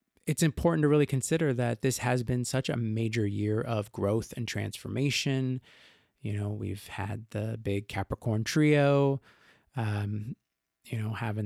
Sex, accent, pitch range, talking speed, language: male, American, 105-135 Hz, 150 wpm, English